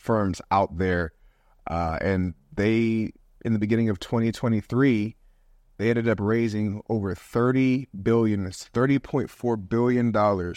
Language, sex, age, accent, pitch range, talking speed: English, male, 30-49, American, 95-115 Hz, 120 wpm